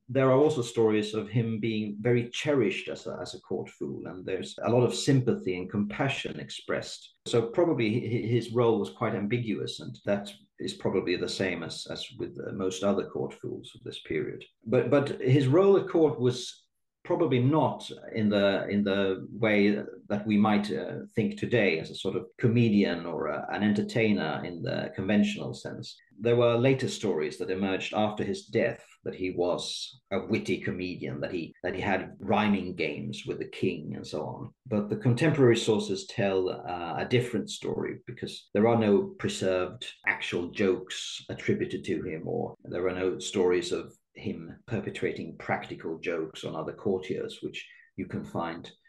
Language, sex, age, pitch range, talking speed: English, male, 50-69, 95-120 Hz, 175 wpm